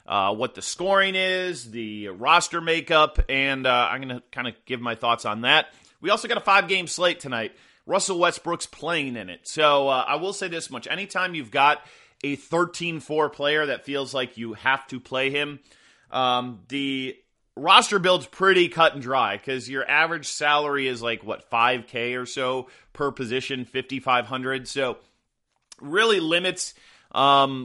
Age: 30-49